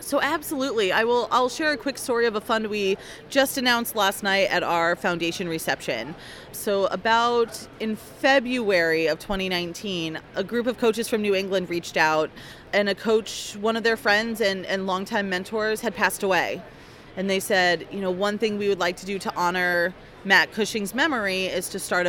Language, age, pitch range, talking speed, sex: English, 30-49, 190-230 Hz, 190 wpm, female